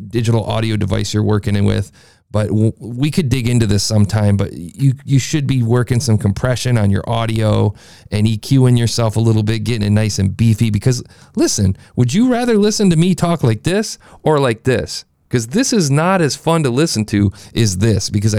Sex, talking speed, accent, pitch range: male, 200 wpm, American, 105-130 Hz